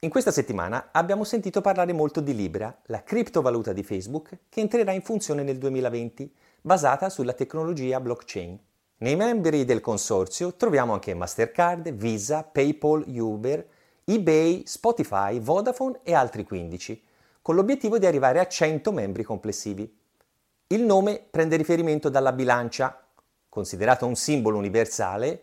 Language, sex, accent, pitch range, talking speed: Italian, male, native, 115-175 Hz, 135 wpm